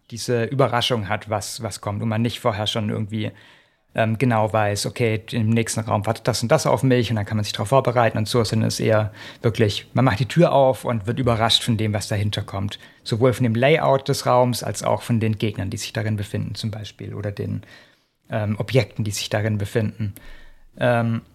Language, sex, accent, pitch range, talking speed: German, male, German, 110-135 Hz, 215 wpm